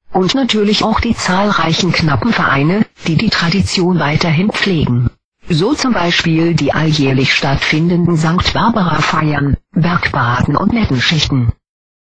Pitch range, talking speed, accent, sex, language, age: 145-185 Hz, 115 wpm, German, female, German, 50-69